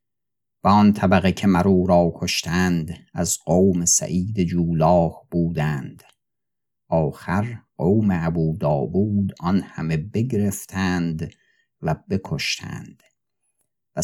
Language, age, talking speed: Persian, 50-69, 90 wpm